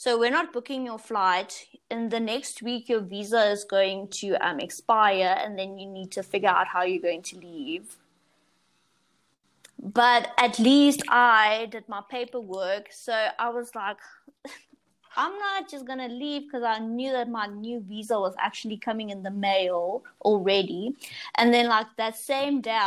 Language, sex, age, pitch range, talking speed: English, female, 20-39, 205-265 Hz, 170 wpm